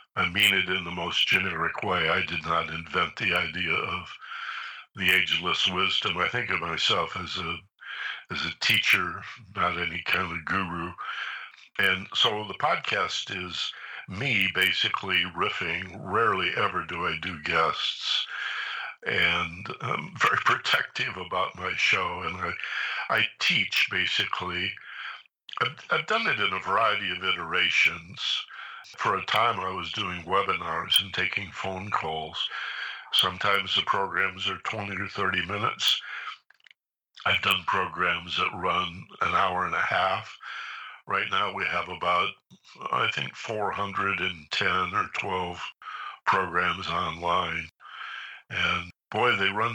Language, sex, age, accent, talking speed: English, male, 60-79, American, 135 wpm